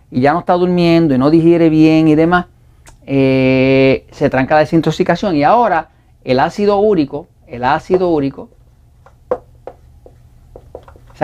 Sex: male